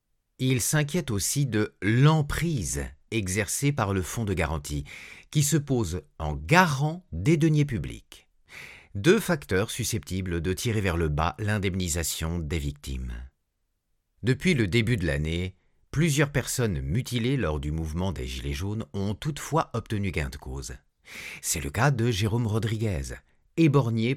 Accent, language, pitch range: French, French, 85-135 Hz